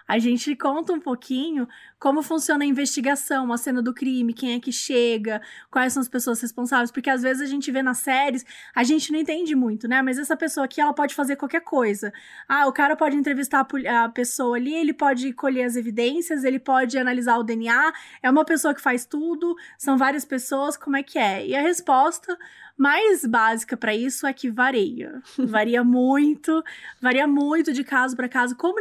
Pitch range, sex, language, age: 240-290 Hz, female, Portuguese, 20-39